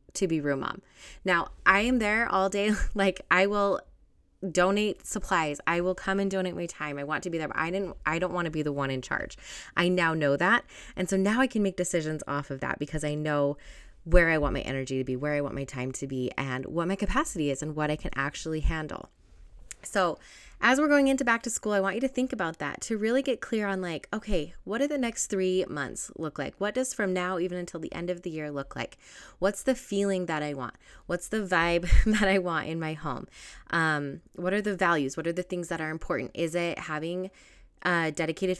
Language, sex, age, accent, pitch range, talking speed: English, female, 20-39, American, 160-205 Hz, 240 wpm